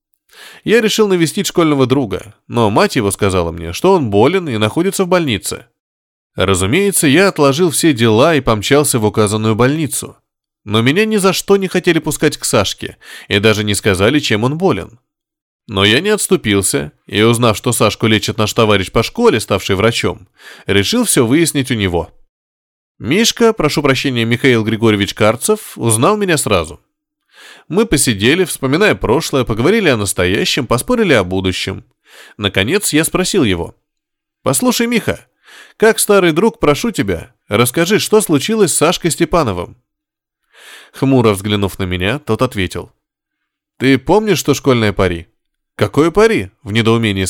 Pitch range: 105-180 Hz